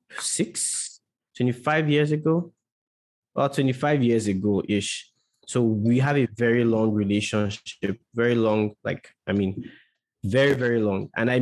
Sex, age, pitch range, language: male, 20-39, 105-130 Hz, English